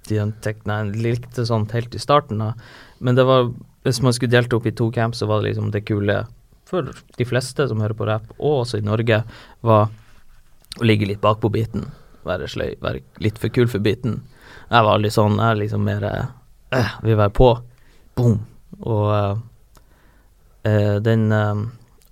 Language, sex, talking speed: English, male, 205 wpm